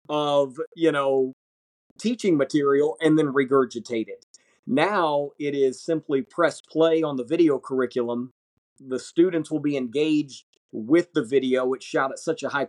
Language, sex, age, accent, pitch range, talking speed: English, male, 40-59, American, 125-150 Hz, 155 wpm